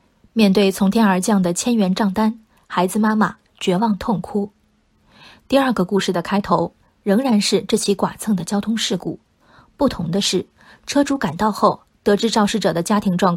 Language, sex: Chinese, female